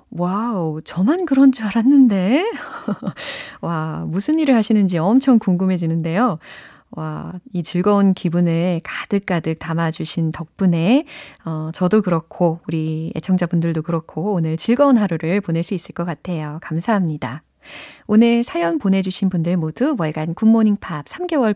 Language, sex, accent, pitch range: Korean, female, native, 170-255 Hz